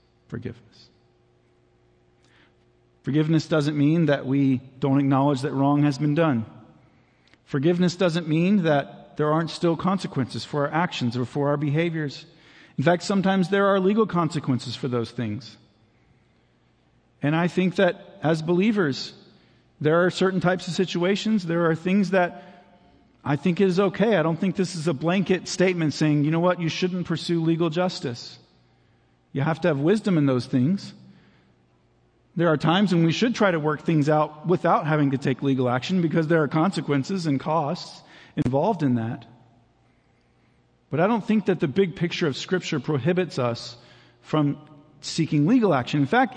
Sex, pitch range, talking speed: male, 135-180 Hz, 165 wpm